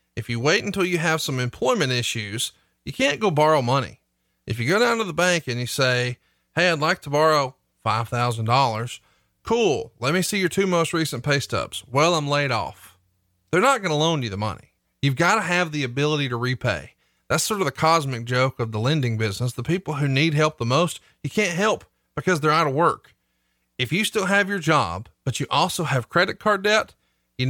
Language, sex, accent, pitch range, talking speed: English, male, American, 125-165 Hz, 215 wpm